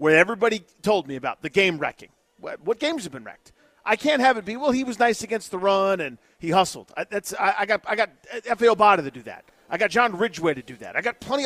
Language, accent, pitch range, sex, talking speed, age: English, American, 170-235 Hz, male, 270 wpm, 40-59